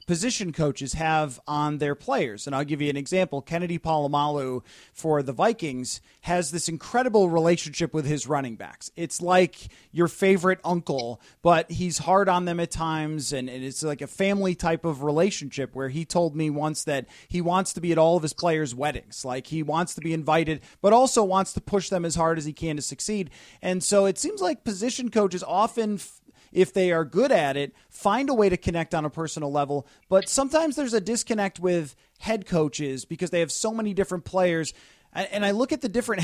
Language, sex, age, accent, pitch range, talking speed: English, male, 30-49, American, 155-200 Hz, 205 wpm